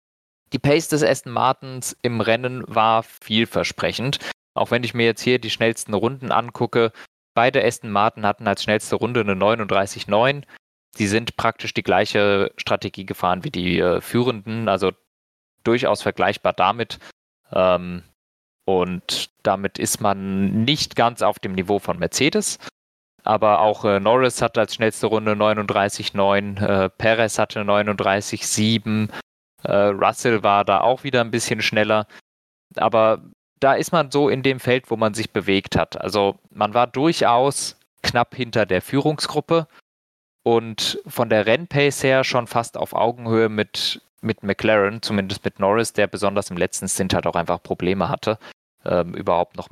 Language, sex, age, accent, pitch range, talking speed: German, male, 20-39, German, 100-120 Hz, 150 wpm